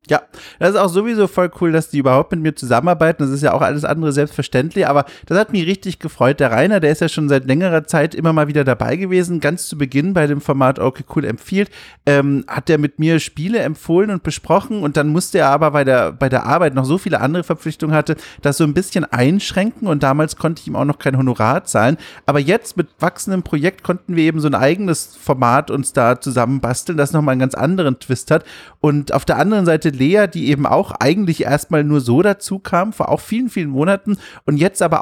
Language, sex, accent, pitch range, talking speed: German, male, German, 145-185 Hz, 230 wpm